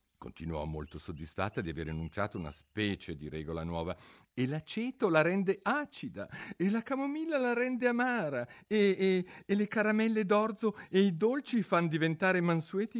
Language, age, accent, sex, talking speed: Italian, 50-69, native, male, 155 wpm